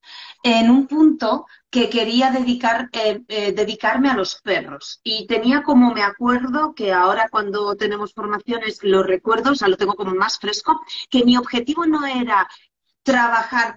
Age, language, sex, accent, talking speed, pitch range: 40-59, Spanish, female, Spanish, 160 wpm, 210-260 Hz